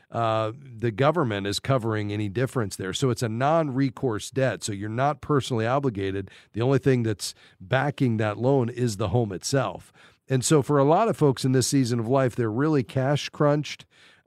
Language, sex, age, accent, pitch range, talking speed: English, male, 40-59, American, 115-145 Hz, 190 wpm